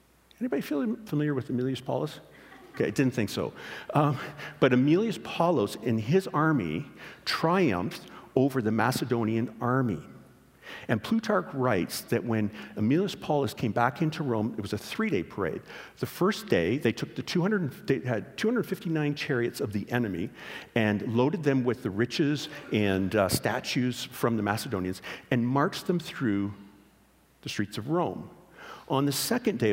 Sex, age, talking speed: male, 50-69, 155 wpm